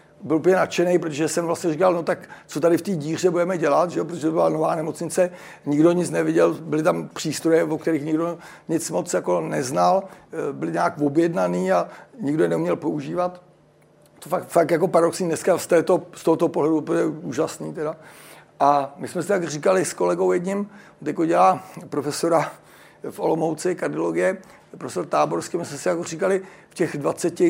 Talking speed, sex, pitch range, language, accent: 175 wpm, male, 160-185 Hz, Czech, native